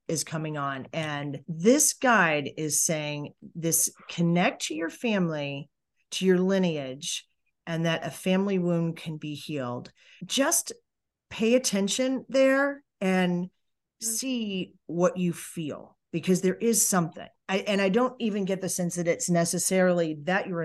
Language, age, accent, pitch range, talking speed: English, 40-59, American, 150-180 Hz, 140 wpm